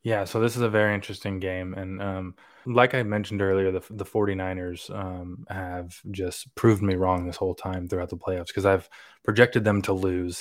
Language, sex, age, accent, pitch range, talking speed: English, male, 20-39, American, 95-110 Hz, 200 wpm